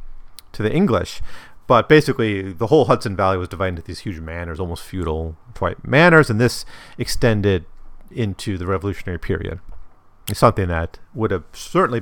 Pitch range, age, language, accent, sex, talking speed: 90-120 Hz, 40-59, English, American, male, 155 wpm